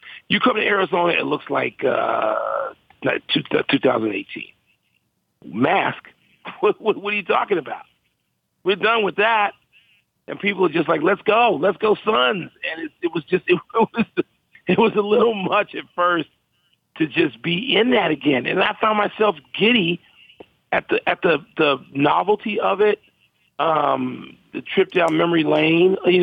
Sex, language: male, English